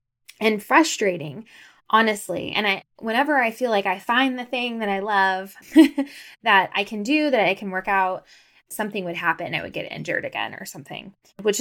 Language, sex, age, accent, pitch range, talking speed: English, female, 10-29, American, 170-230 Hz, 185 wpm